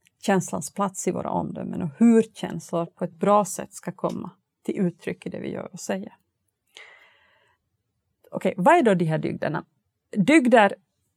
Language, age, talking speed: Swedish, 30-49, 165 wpm